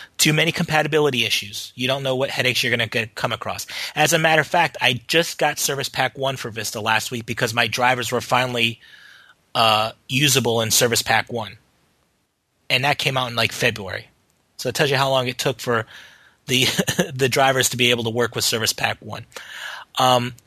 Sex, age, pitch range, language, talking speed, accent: male, 30-49, 115-145 Hz, English, 200 wpm, American